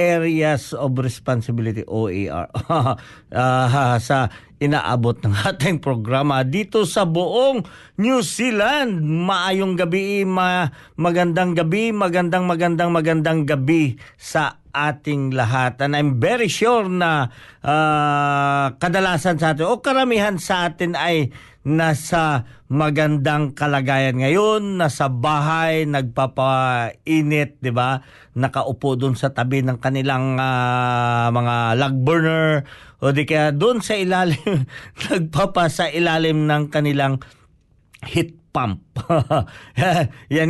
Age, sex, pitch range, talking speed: 50-69, male, 130-175 Hz, 110 wpm